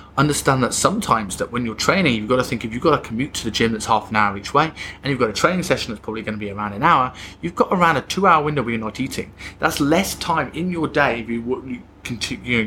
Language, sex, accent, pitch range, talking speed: English, male, British, 105-140 Hz, 275 wpm